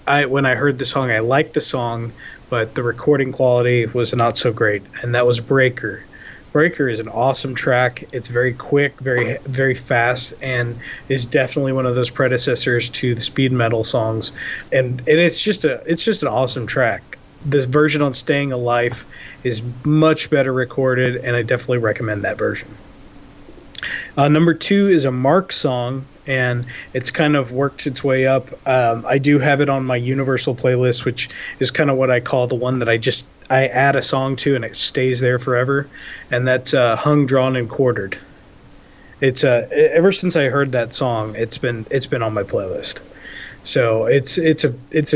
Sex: male